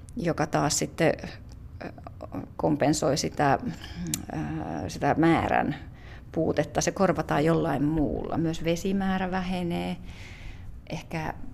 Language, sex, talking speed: Finnish, female, 85 wpm